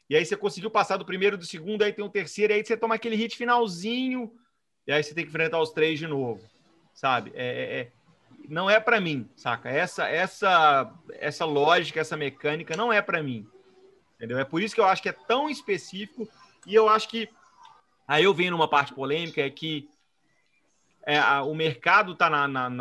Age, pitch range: 30-49, 135-195 Hz